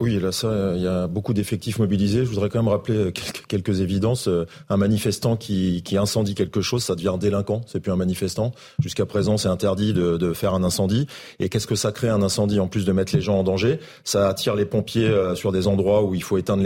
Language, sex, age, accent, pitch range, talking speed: French, male, 30-49, French, 100-120 Hz, 255 wpm